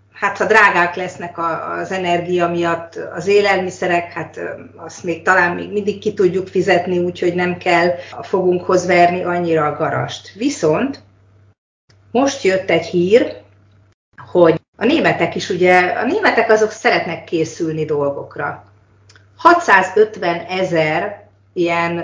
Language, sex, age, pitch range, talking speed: Hungarian, female, 30-49, 155-190 Hz, 125 wpm